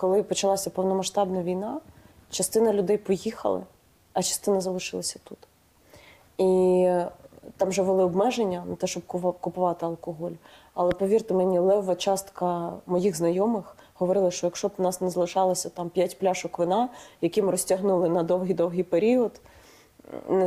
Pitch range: 180-205 Hz